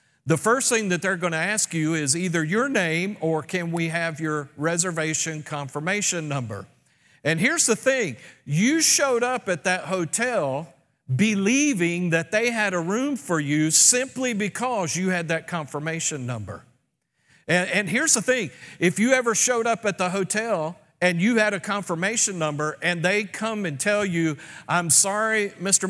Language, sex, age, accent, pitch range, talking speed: English, male, 50-69, American, 160-205 Hz, 170 wpm